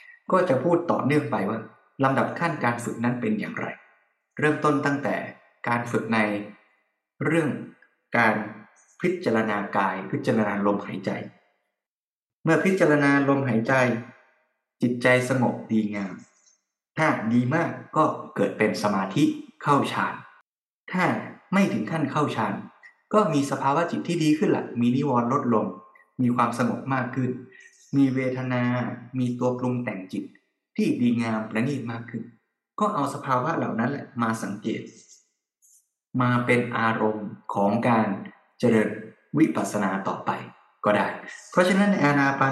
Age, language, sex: 20-39, Thai, male